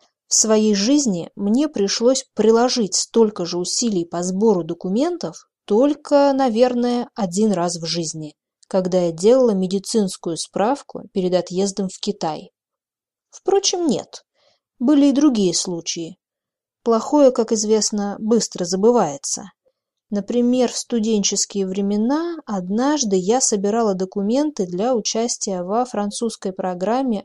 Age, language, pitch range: 20-39, Russian, 190-255 Hz